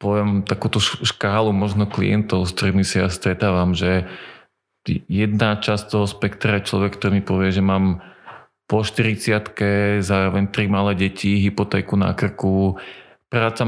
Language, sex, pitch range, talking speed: Slovak, male, 95-105 Hz, 140 wpm